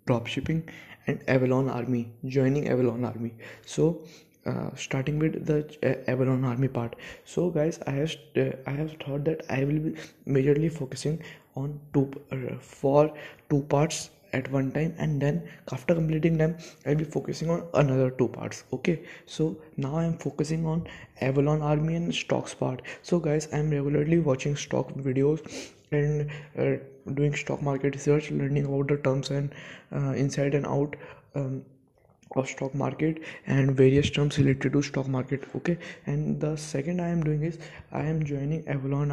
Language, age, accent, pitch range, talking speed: English, 20-39, Indian, 135-155 Hz, 160 wpm